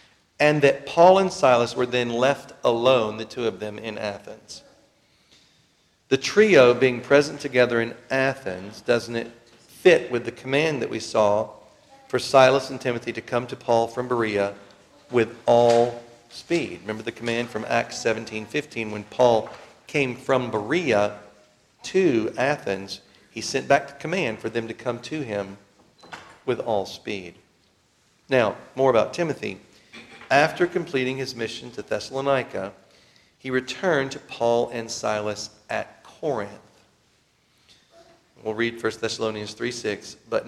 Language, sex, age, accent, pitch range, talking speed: English, male, 40-59, American, 110-130 Hz, 140 wpm